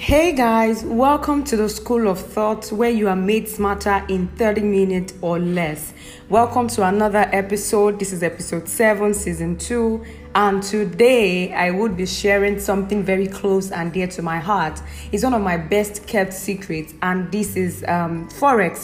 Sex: female